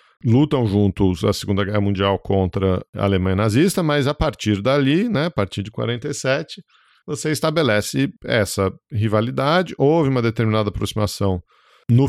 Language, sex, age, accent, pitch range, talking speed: Portuguese, male, 50-69, Brazilian, 100-135 Hz, 140 wpm